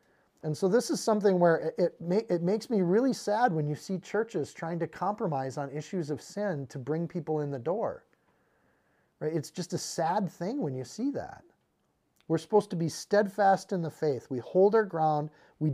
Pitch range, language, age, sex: 155-200 Hz, English, 40-59, male